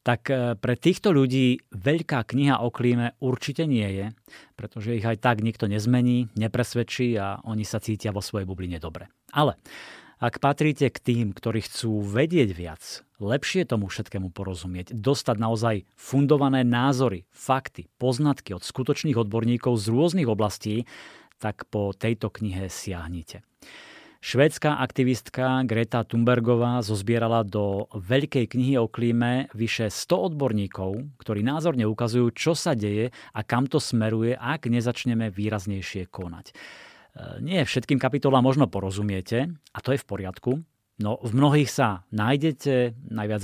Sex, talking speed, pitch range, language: male, 135 wpm, 105-130 Hz, Slovak